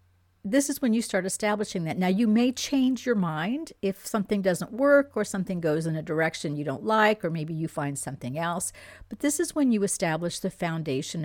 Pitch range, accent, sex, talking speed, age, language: 155-215 Hz, American, female, 215 wpm, 50-69, English